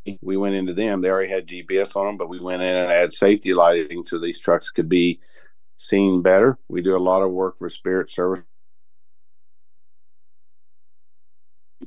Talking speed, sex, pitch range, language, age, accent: 170 wpm, male, 85-100 Hz, English, 50-69, American